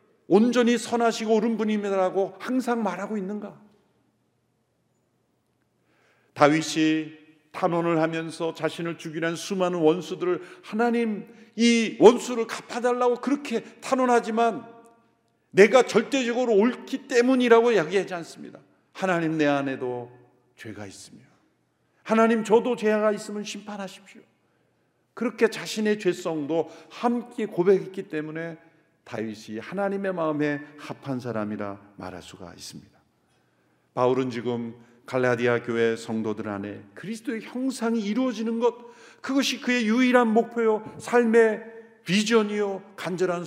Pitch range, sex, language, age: 155-230 Hz, male, Korean, 50-69